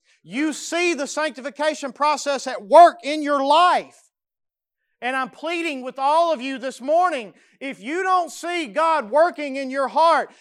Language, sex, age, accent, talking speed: English, male, 40-59, American, 160 wpm